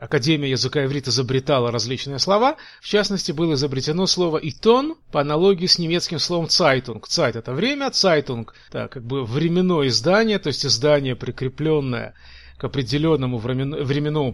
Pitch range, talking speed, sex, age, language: 130-170 Hz, 140 wpm, male, 30-49, Russian